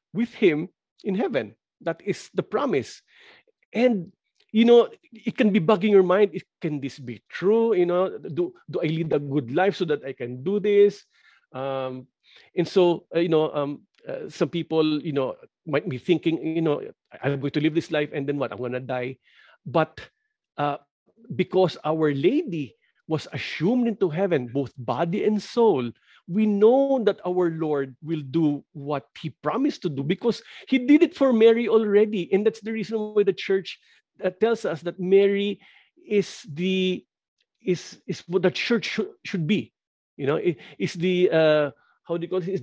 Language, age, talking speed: English, 50-69, 170 wpm